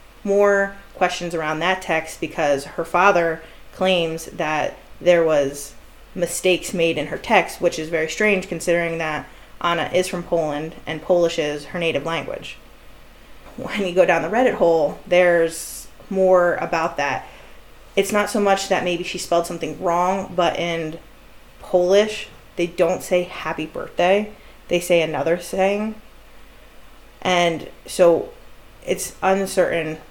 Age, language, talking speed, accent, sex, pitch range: 20-39, English, 140 wpm, American, female, 165-195 Hz